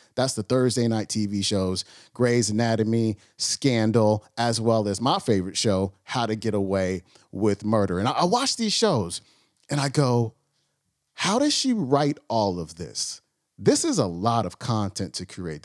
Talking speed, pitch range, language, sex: 175 wpm, 100-140 Hz, English, male